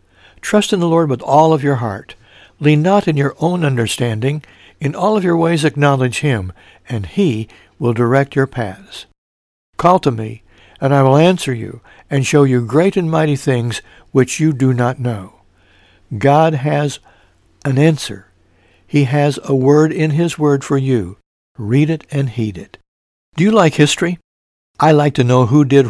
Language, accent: English, American